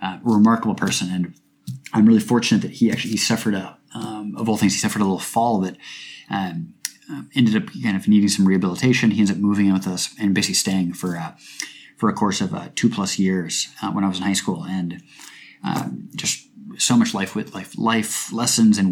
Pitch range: 95-110 Hz